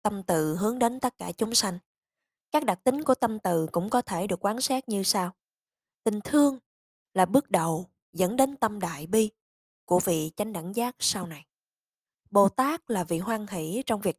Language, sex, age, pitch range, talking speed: Vietnamese, female, 20-39, 170-230 Hz, 200 wpm